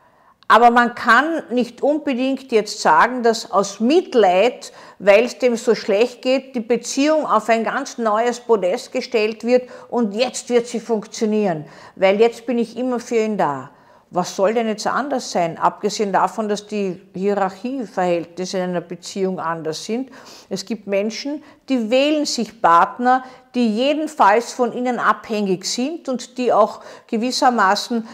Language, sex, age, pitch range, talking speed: German, female, 50-69, 205-260 Hz, 150 wpm